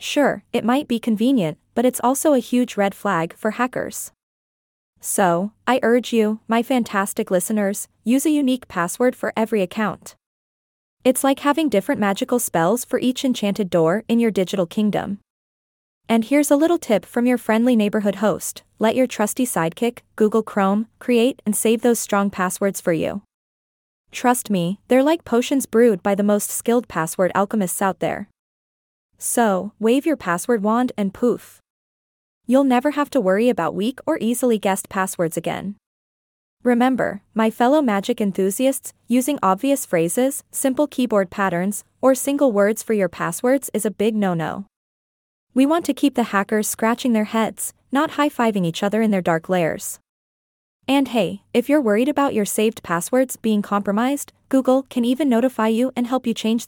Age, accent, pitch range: 20-39, American, 200-255 Hz